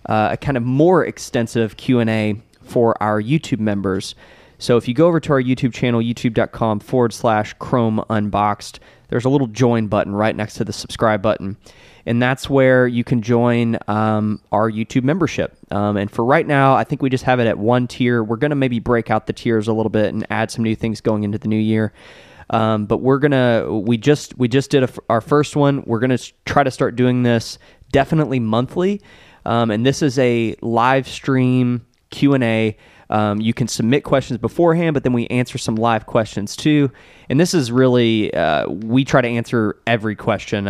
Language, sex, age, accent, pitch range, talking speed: English, male, 20-39, American, 110-130 Hz, 200 wpm